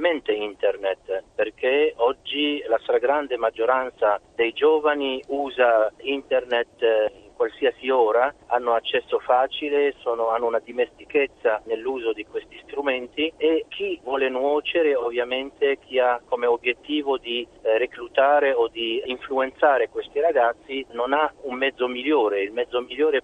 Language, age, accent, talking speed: Italian, 50-69, native, 120 wpm